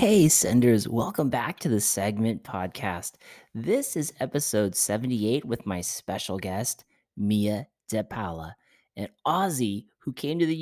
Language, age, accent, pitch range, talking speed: English, 30-49, American, 100-125 Hz, 135 wpm